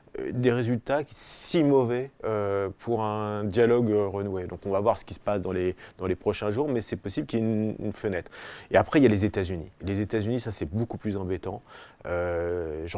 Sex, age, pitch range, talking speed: male, 30-49, 90-105 Hz, 220 wpm